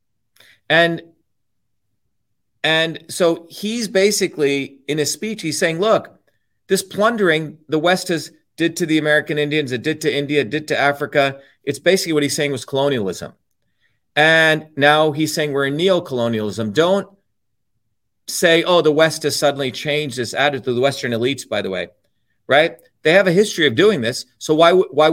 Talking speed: 170 wpm